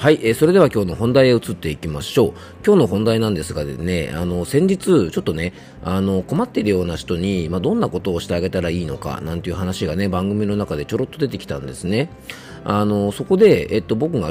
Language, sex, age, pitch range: Japanese, male, 40-59, 85-115 Hz